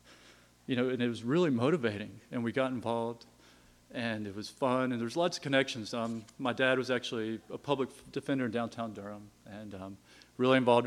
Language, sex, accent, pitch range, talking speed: English, male, American, 105-125 Hz, 195 wpm